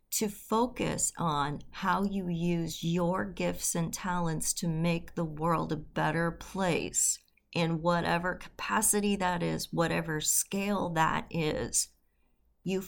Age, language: 40-59, English